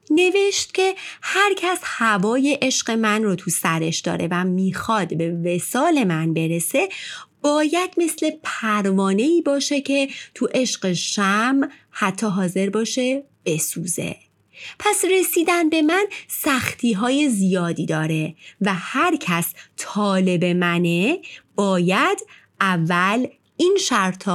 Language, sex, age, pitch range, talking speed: Persian, female, 30-49, 180-290 Hz, 115 wpm